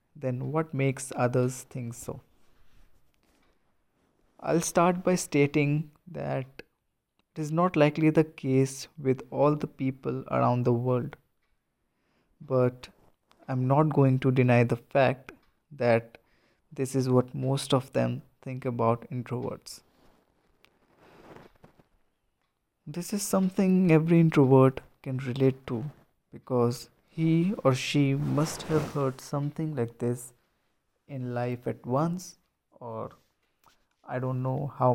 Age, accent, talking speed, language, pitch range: 20-39, Indian, 120 wpm, English, 125-150 Hz